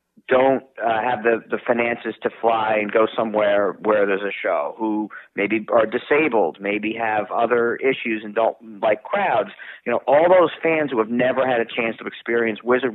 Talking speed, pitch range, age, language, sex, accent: 190 wpm, 110-135 Hz, 50-69, English, male, American